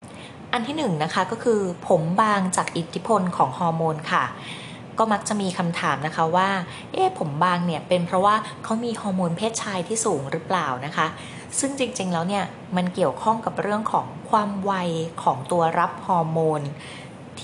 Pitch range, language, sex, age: 160-200 Hz, Thai, female, 20-39